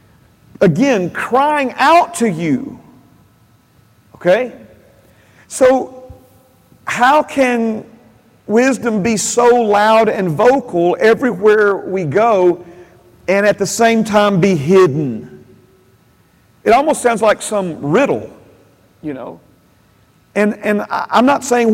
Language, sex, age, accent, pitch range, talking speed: English, male, 40-59, American, 175-235 Hz, 105 wpm